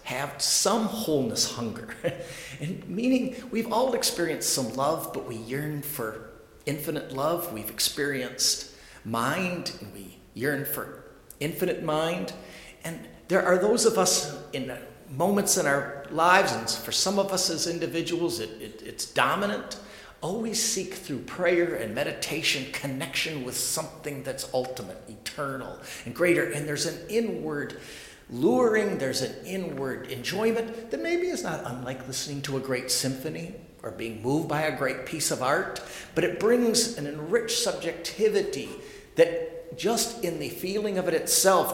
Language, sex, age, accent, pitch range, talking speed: English, male, 50-69, American, 130-185 Hz, 145 wpm